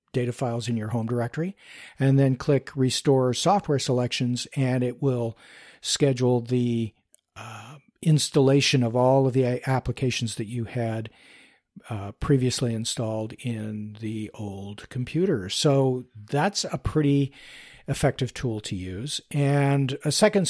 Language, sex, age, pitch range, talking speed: English, male, 50-69, 120-145 Hz, 130 wpm